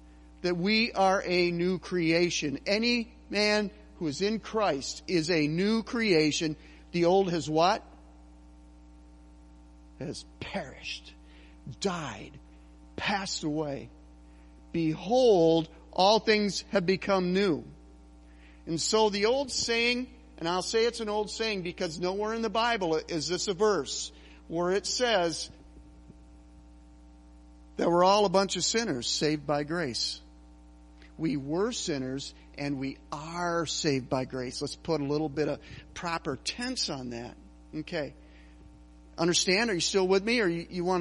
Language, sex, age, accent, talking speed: English, male, 50-69, American, 140 wpm